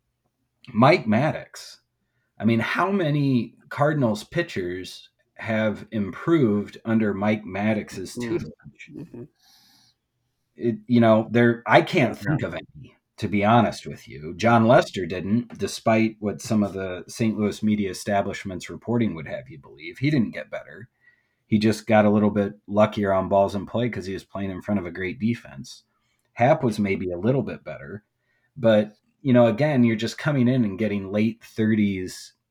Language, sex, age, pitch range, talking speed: English, male, 30-49, 100-120 Hz, 160 wpm